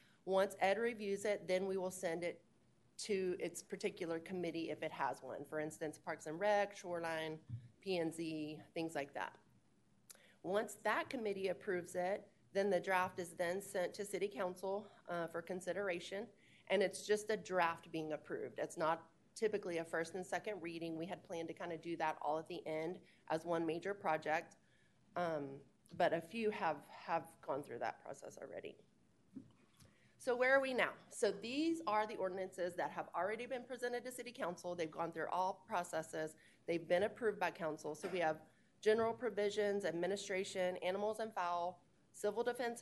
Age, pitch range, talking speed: 30-49, 165-205 Hz, 175 wpm